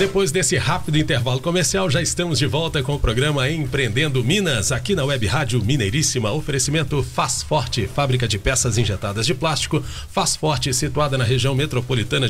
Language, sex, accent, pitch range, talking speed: Portuguese, male, Brazilian, 125-145 Hz, 165 wpm